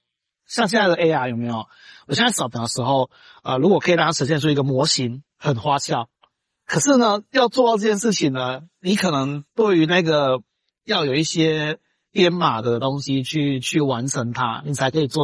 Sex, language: male, Chinese